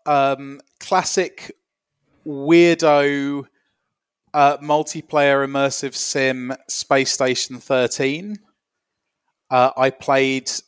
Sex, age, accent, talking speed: male, 30-49, British, 75 wpm